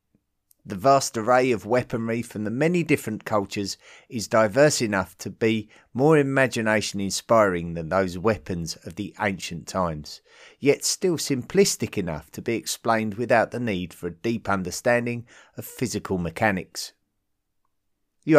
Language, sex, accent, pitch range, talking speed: English, male, British, 95-130 Hz, 135 wpm